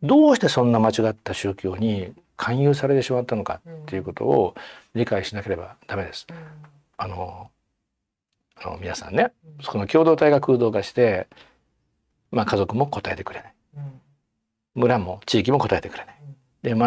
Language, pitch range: Japanese, 100-140 Hz